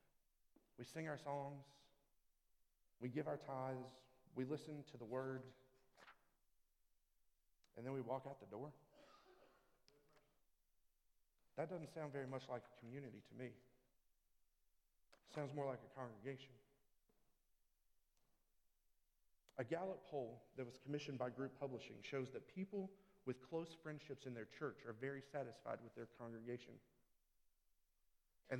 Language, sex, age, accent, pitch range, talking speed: English, male, 40-59, American, 125-150 Hz, 130 wpm